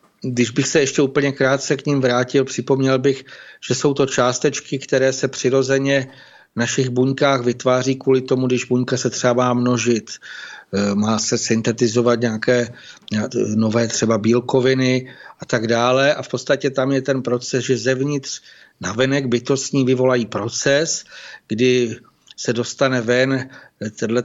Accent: native